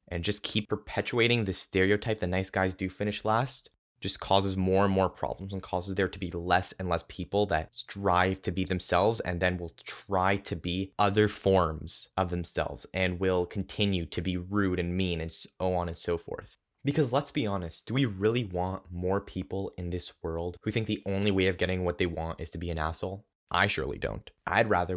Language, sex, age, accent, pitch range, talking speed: English, male, 20-39, American, 90-105 Hz, 215 wpm